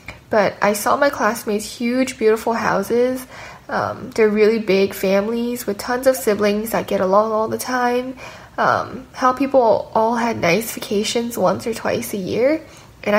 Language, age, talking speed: English, 10-29, 165 wpm